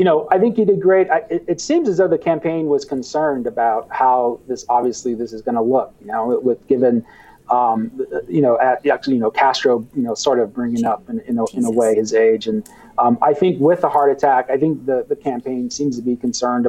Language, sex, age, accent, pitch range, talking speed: English, male, 30-49, American, 125-160 Hz, 250 wpm